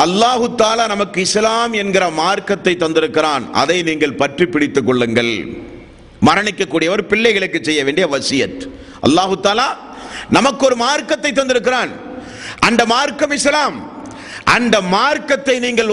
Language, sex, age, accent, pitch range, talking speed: Tamil, male, 50-69, native, 205-270 Hz, 40 wpm